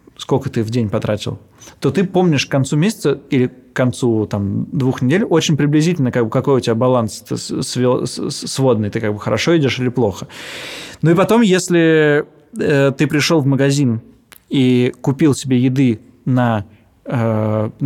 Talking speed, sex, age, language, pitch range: 165 wpm, male, 20-39, Russian, 120-145 Hz